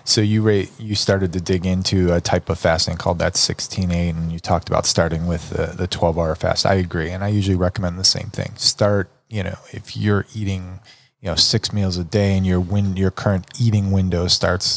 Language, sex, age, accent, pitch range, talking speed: English, male, 20-39, American, 90-105 Hz, 225 wpm